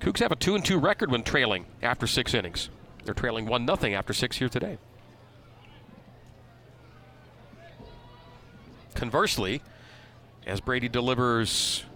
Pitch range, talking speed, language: 110-130 Hz, 115 wpm, English